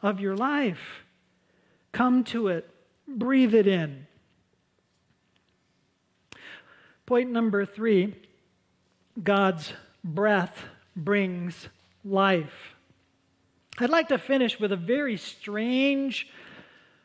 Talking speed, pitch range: 85 wpm, 185-245 Hz